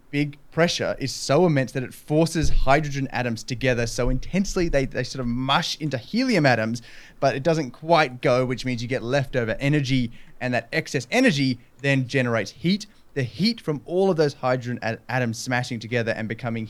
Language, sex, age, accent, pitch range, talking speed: English, male, 20-39, Australian, 120-150 Hz, 185 wpm